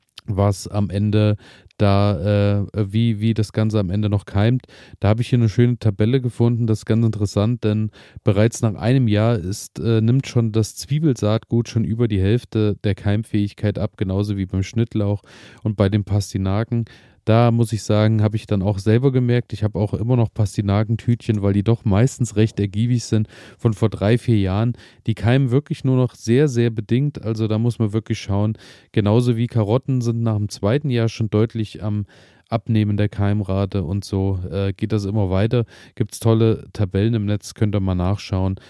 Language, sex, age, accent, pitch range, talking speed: German, male, 30-49, German, 105-120 Hz, 195 wpm